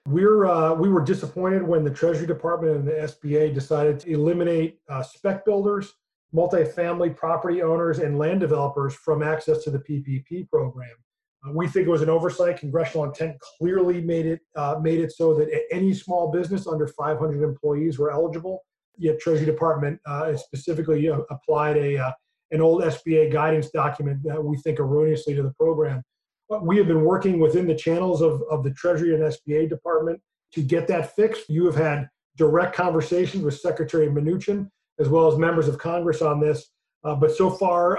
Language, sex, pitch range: English, male, 150-170 Hz